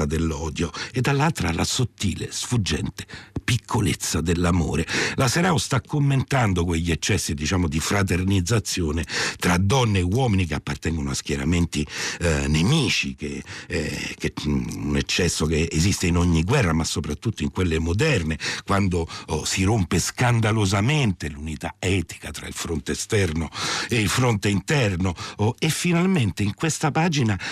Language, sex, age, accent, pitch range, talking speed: Italian, male, 60-79, native, 85-120 Hz, 135 wpm